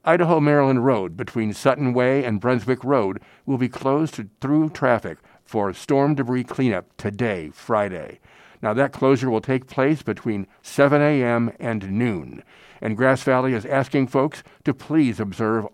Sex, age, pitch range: male, 50-69, 110-135 Hz